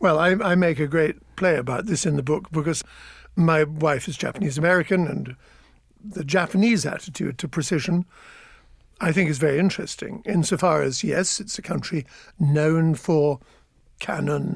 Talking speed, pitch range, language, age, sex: 155 wpm, 160-200 Hz, English, 60-79, male